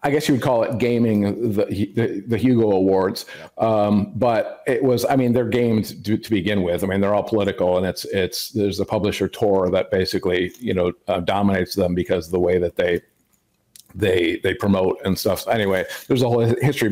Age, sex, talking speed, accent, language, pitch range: 50-69, male, 215 wpm, American, English, 95-115 Hz